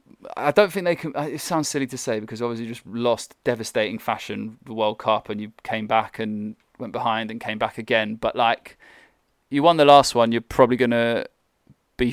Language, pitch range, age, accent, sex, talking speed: English, 110-130 Hz, 20-39, British, male, 205 wpm